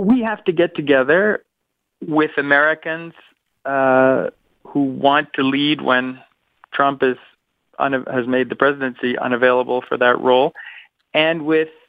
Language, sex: English, male